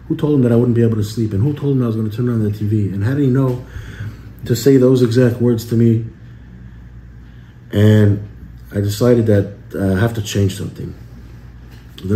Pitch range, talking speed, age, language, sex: 95-115 Hz, 215 wpm, 30-49, English, male